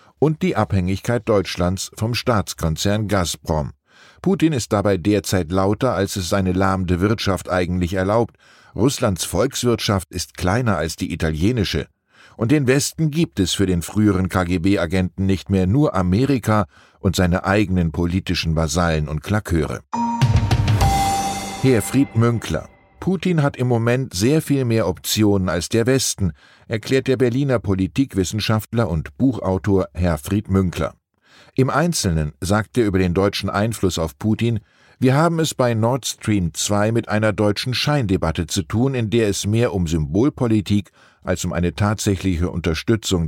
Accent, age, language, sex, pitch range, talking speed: German, 10-29, German, male, 90-120 Hz, 135 wpm